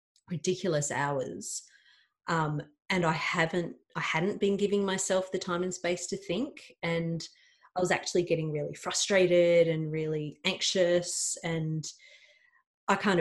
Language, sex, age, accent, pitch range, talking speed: English, female, 30-49, Australian, 160-190 Hz, 135 wpm